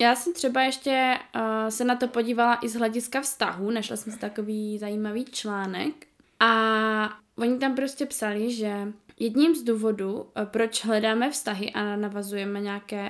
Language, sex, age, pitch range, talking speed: Czech, female, 20-39, 210-240 Hz, 150 wpm